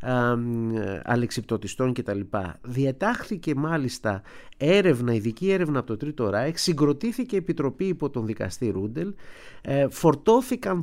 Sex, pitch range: male, 115-160 Hz